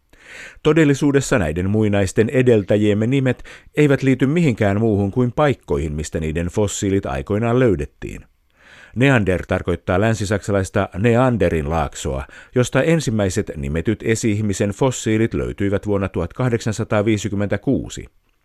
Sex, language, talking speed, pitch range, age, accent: male, Finnish, 95 wpm, 90-115 Hz, 50-69, native